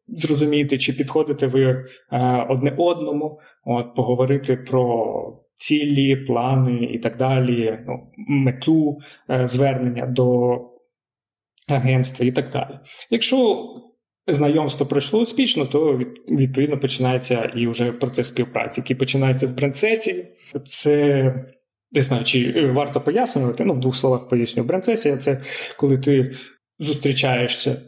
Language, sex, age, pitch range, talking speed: Ukrainian, male, 20-39, 125-145 Hz, 110 wpm